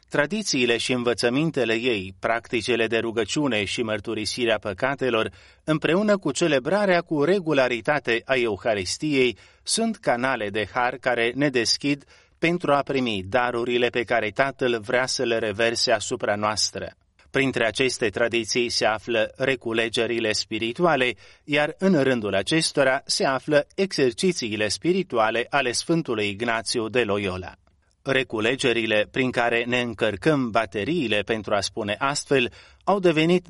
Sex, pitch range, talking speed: male, 110-145 Hz, 125 wpm